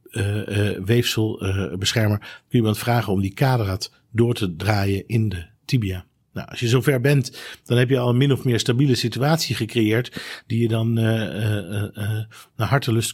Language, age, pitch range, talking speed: Dutch, 50-69, 105-130 Hz, 185 wpm